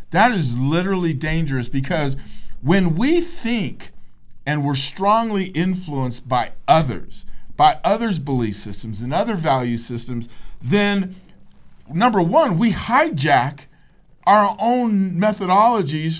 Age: 50-69